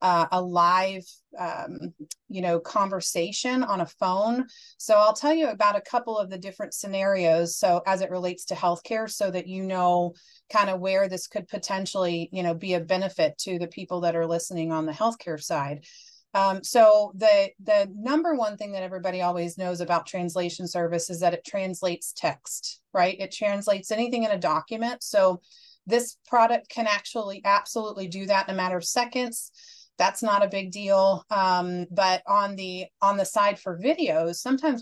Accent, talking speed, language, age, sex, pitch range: American, 185 wpm, English, 30-49, female, 185-230 Hz